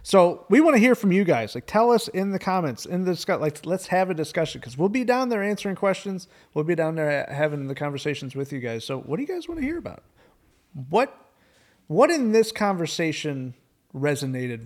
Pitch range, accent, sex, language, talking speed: 125-170 Hz, American, male, English, 220 wpm